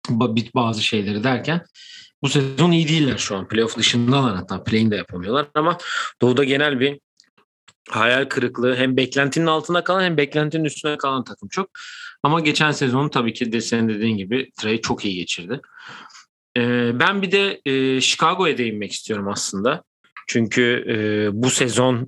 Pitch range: 110-135 Hz